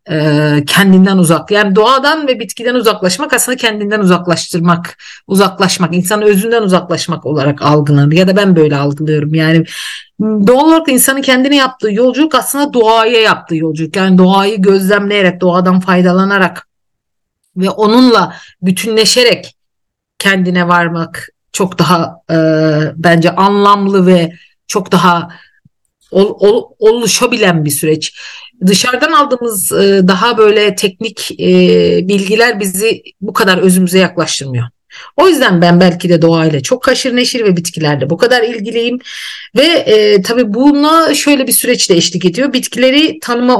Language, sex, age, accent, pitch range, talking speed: Turkish, female, 50-69, native, 170-240 Hz, 120 wpm